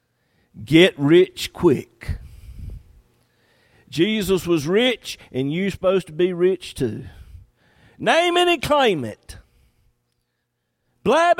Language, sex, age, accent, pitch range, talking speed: English, male, 50-69, American, 115-170 Hz, 100 wpm